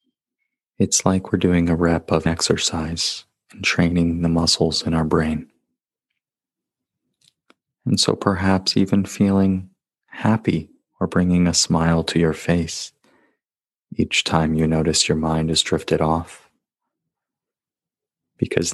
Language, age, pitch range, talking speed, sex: English, 30-49, 80-95 Hz, 120 wpm, male